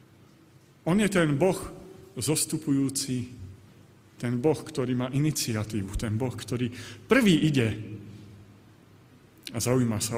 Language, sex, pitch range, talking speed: Slovak, male, 110-160 Hz, 105 wpm